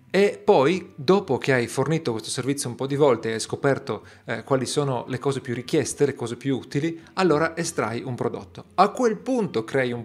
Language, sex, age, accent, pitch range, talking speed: Italian, male, 40-59, native, 120-150 Hz, 210 wpm